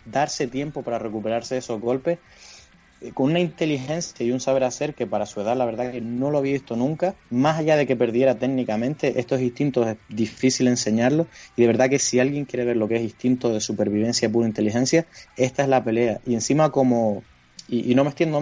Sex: male